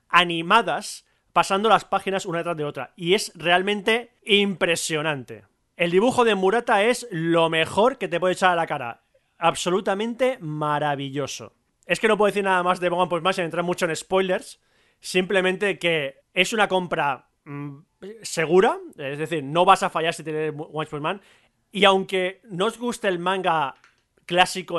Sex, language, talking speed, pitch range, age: male, Spanish, 165 wpm, 155-190 Hz, 30-49